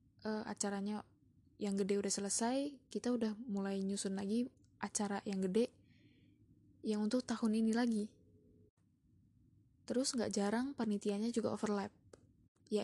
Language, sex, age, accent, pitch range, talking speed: Indonesian, female, 10-29, native, 200-225 Hz, 120 wpm